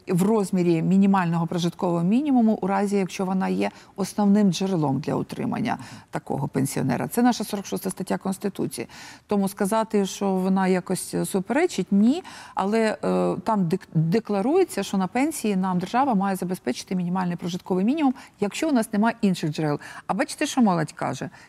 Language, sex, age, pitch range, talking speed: Ukrainian, female, 50-69, 180-225 Hz, 150 wpm